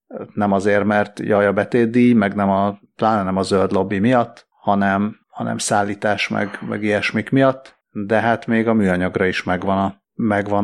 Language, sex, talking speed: Hungarian, male, 170 wpm